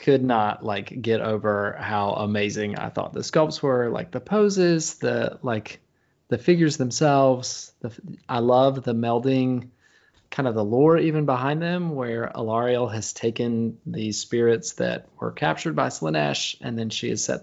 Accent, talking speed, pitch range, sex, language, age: American, 165 wpm, 105-140 Hz, male, English, 20-39